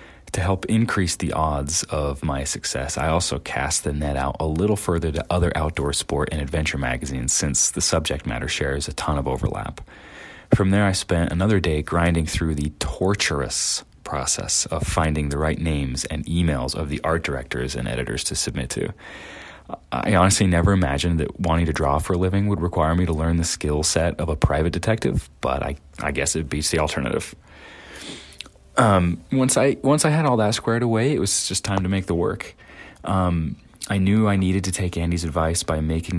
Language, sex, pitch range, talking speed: English, male, 75-90 Hz, 200 wpm